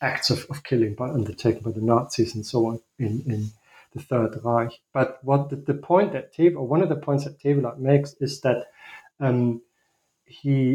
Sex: male